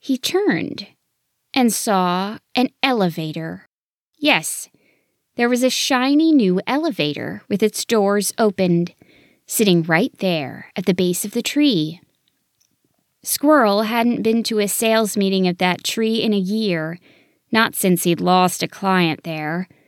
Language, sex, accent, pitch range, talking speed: English, female, American, 180-245 Hz, 140 wpm